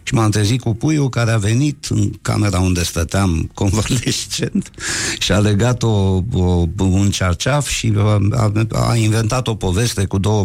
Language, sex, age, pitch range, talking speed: Romanian, male, 60-79, 90-115 Hz, 160 wpm